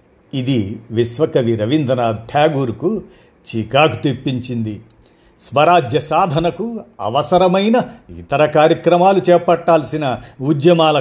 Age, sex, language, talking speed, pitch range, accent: 50-69, male, Telugu, 70 wpm, 120-170 Hz, native